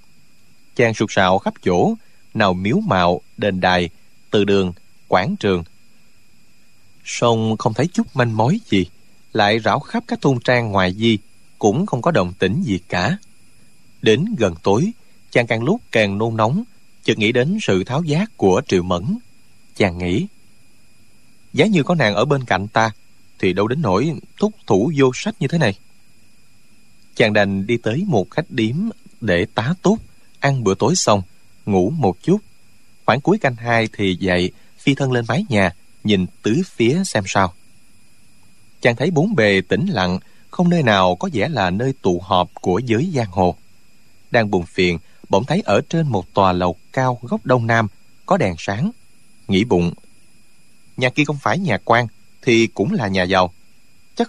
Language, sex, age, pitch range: Vietnamese, male, 20-39, 95-135 Hz